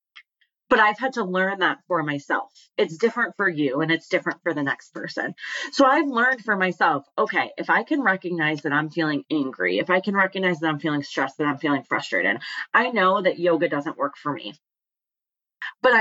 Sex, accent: female, American